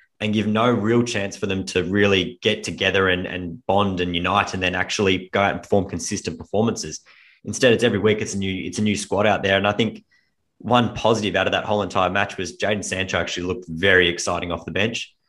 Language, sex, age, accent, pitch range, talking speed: English, male, 20-39, Australian, 95-105 Hz, 230 wpm